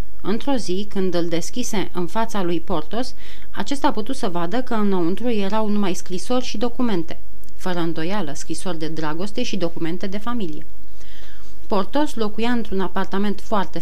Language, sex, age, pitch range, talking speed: Romanian, female, 30-49, 175-220 Hz, 150 wpm